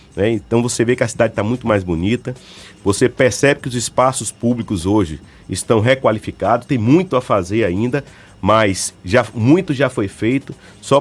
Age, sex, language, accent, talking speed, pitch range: 40-59, male, Portuguese, Brazilian, 175 wpm, 105-135 Hz